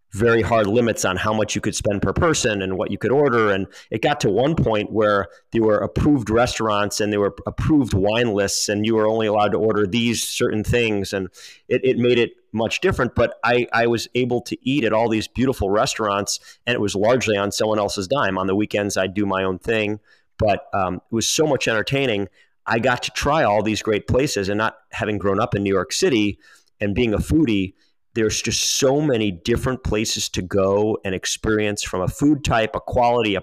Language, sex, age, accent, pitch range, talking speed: English, male, 30-49, American, 95-115 Hz, 220 wpm